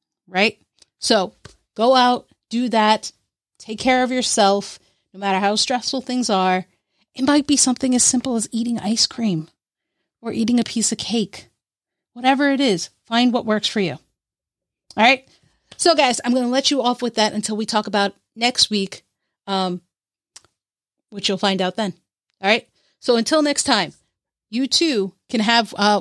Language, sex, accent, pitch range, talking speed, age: English, female, American, 200-255 Hz, 175 wpm, 30-49